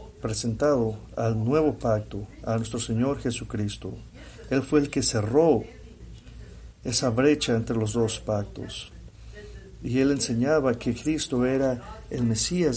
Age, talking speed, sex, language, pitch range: 50-69, 125 wpm, male, English, 110-130 Hz